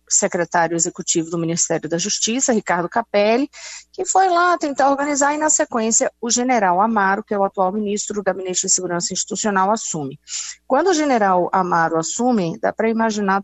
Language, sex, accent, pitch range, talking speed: Portuguese, female, Brazilian, 175-230 Hz, 165 wpm